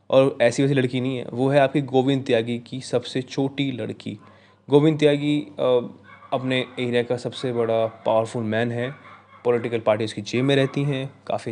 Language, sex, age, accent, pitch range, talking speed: Hindi, male, 20-39, native, 115-135 Hz, 170 wpm